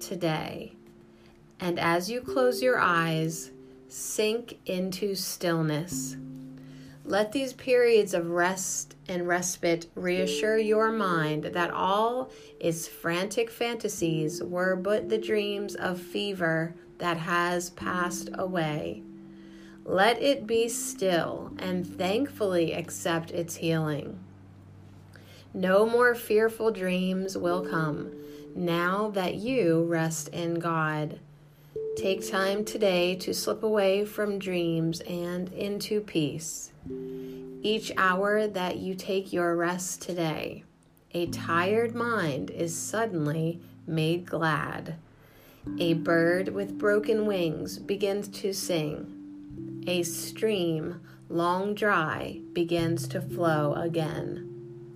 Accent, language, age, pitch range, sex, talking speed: American, English, 30-49, 150-195 Hz, female, 105 wpm